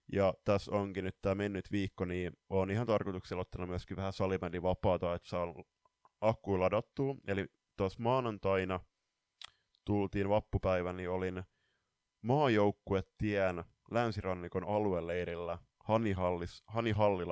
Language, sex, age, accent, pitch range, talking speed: Finnish, male, 20-39, native, 90-105 Hz, 105 wpm